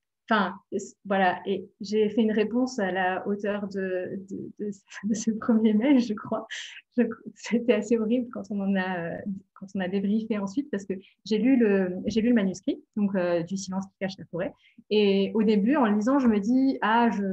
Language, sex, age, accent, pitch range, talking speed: French, female, 30-49, French, 190-235 Hz, 215 wpm